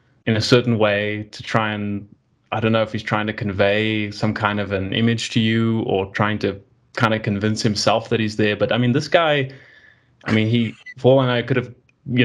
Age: 20-39